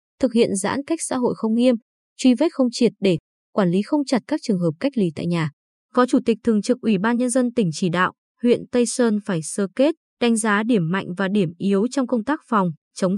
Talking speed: 245 wpm